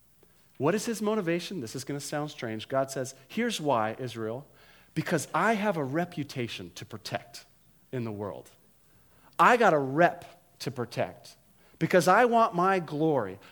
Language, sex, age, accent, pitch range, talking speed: English, male, 40-59, American, 160-235 Hz, 160 wpm